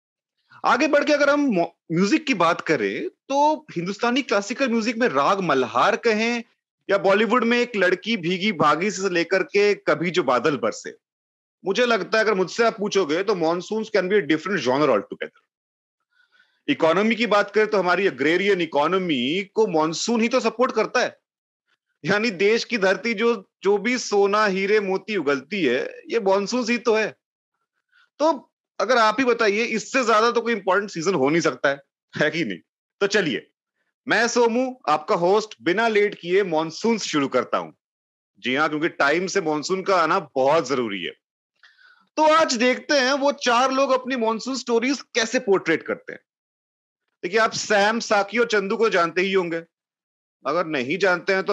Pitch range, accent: 185-245 Hz, native